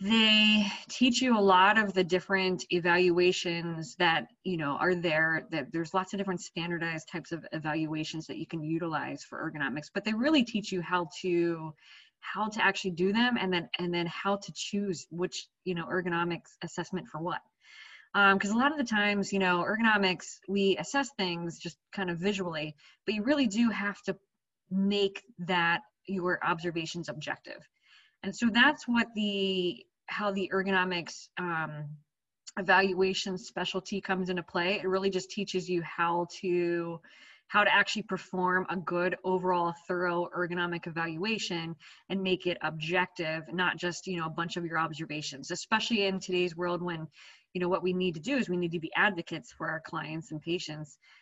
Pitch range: 170-195 Hz